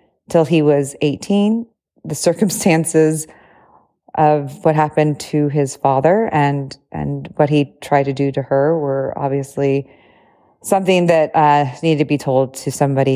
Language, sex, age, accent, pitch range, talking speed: English, female, 30-49, American, 145-175 Hz, 145 wpm